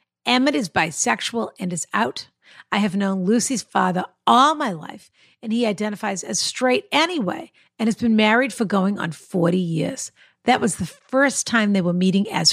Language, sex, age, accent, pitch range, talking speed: English, female, 50-69, American, 175-235 Hz, 180 wpm